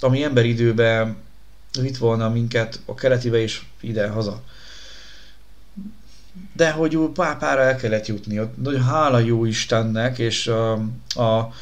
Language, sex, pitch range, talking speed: Hungarian, male, 110-130 Hz, 125 wpm